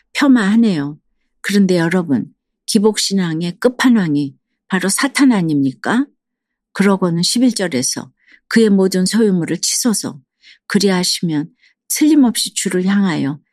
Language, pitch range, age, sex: Korean, 170-225 Hz, 50-69, female